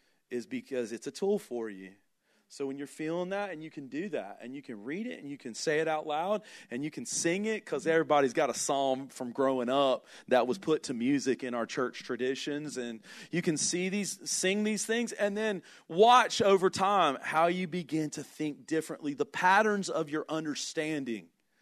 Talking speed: 210 wpm